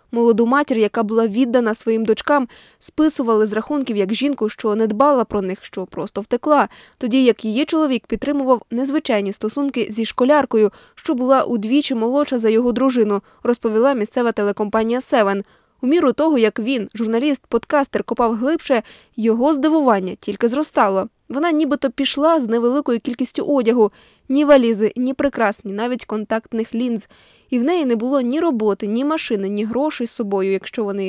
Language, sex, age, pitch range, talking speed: Ukrainian, female, 20-39, 215-270 Hz, 160 wpm